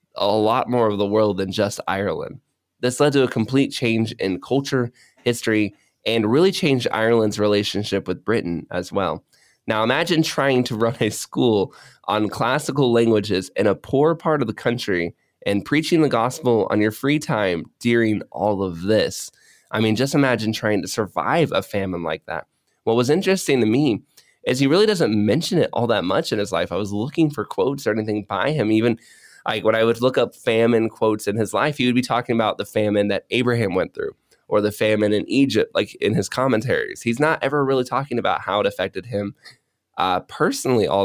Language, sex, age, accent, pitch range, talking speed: English, male, 20-39, American, 105-130 Hz, 200 wpm